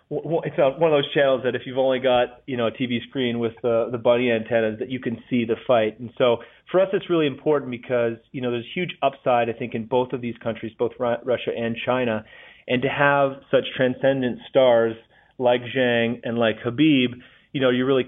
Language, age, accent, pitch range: English, 30-49, American, 120-135 Hz